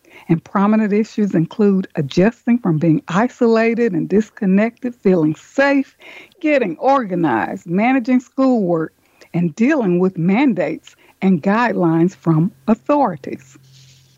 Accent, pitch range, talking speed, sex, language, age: American, 180-260 Hz, 100 wpm, female, English, 60-79